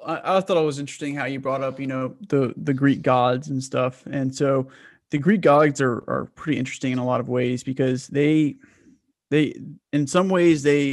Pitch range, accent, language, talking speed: 130-145 Hz, American, English, 210 wpm